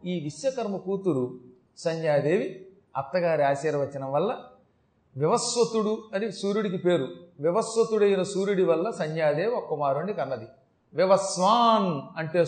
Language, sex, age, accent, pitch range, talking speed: Telugu, male, 40-59, native, 150-205 Hz, 90 wpm